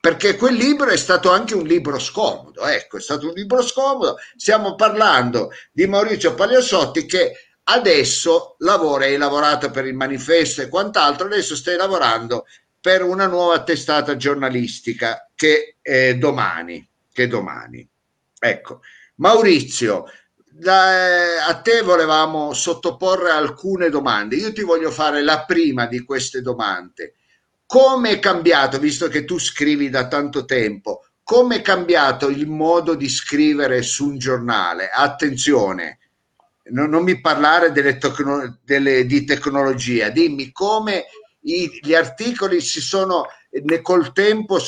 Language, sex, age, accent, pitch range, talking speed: Italian, male, 50-69, native, 140-195 Hz, 135 wpm